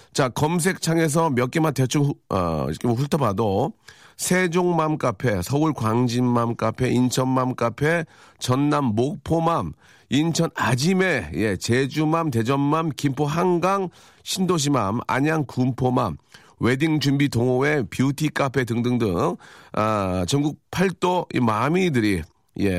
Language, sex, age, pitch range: Korean, male, 40-59, 105-150 Hz